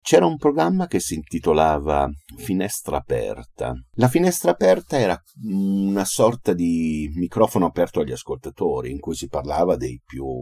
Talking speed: 145 wpm